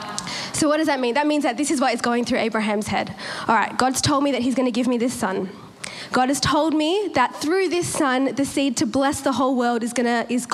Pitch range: 255-325 Hz